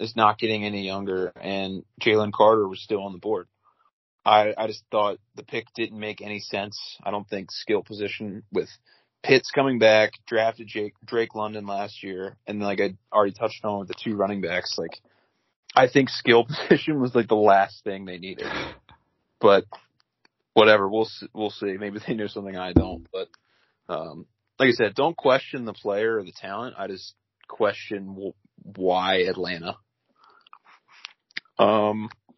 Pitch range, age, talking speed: 100-115 Hz, 30-49, 170 wpm